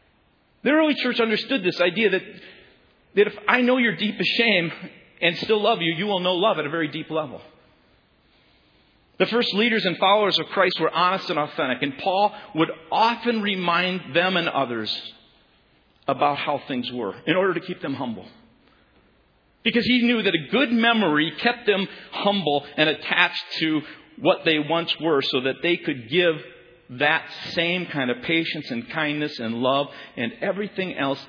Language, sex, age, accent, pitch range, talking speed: English, male, 50-69, American, 125-185 Hz, 175 wpm